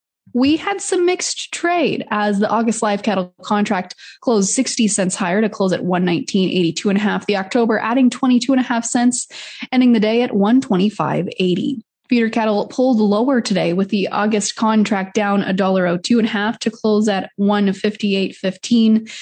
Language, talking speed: English, 205 wpm